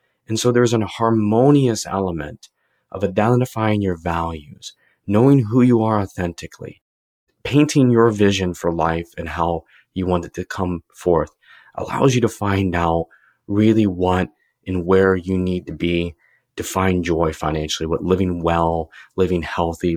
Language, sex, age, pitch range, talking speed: English, male, 30-49, 85-105 Hz, 150 wpm